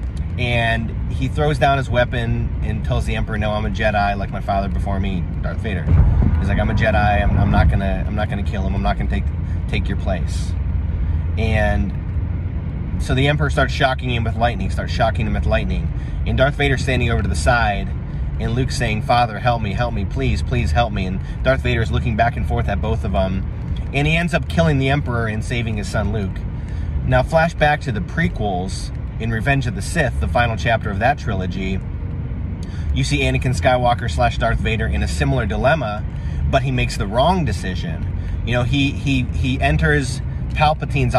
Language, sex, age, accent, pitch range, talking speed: English, male, 30-49, American, 85-120 Hz, 200 wpm